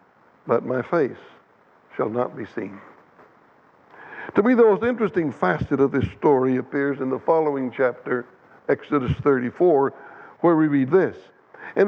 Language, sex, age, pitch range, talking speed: English, male, 60-79, 140-190 Hz, 140 wpm